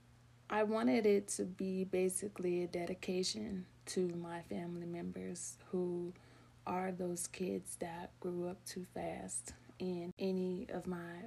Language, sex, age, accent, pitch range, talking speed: English, female, 20-39, American, 165-185 Hz, 135 wpm